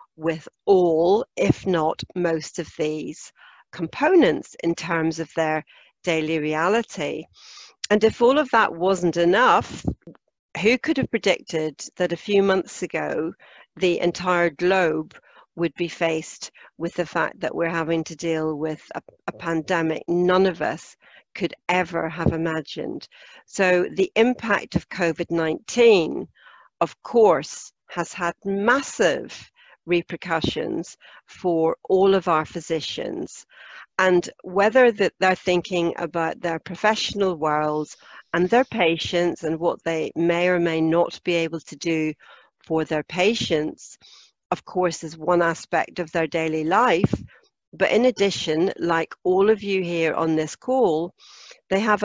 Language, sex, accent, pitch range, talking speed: English, female, British, 160-190 Hz, 135 wpm